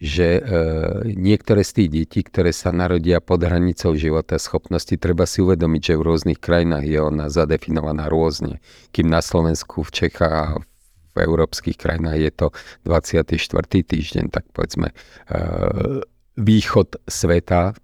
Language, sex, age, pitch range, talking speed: Slovak, male, 50-69, 80-95 Hz, 140 wpm